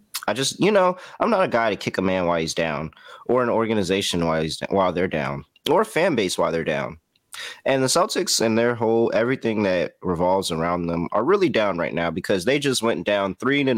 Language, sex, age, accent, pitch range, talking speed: English, male, 30-49, American, 95-135 Hz, 235 wpm